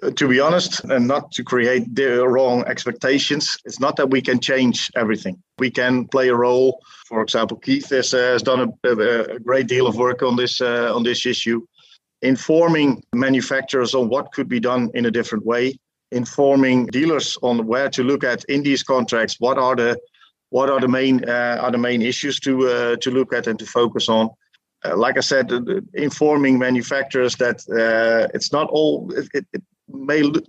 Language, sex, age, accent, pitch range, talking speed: English, male, 50-69, Dutch, 120-145 Hz, 195 wpm